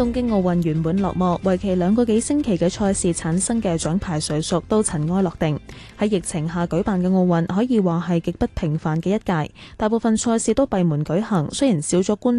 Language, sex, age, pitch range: Chinese, female, 10-29, 170-220 Hz